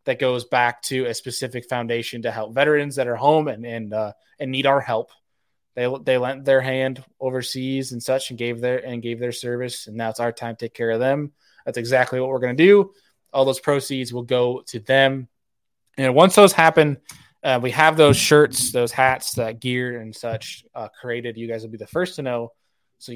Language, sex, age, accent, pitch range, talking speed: English, male, 20-39, American, 120-140 Hz, 220 wpm